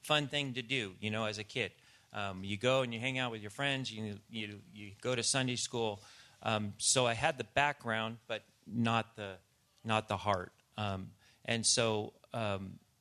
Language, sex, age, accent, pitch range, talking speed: English, male, 40-59, American, 105-125 Hz, 195 wpm